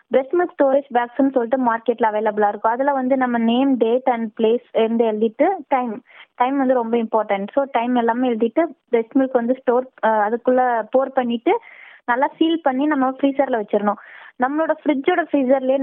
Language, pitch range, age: Tamil, 235-285 Hz, 20-39